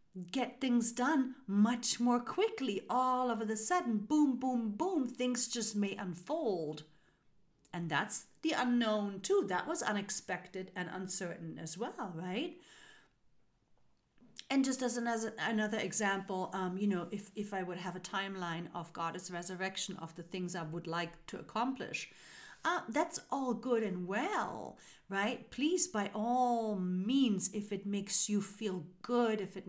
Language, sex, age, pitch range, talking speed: English, female, 40-59, 185-240 Hz, 155 wpm